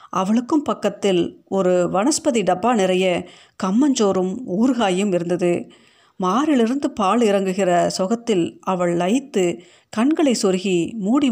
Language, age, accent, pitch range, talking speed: Tamil, 50-69, native, 180-230 Hz, 95 wpm